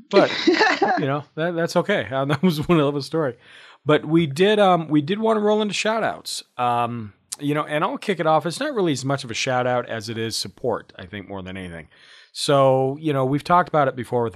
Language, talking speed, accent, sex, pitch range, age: English, 245 wpm, American, male, 110-145 Hz, 40-59